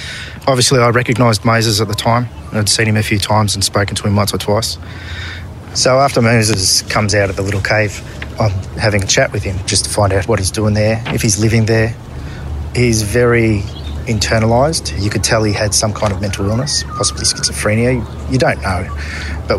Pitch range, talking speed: 95-115 Hz, 205 wpm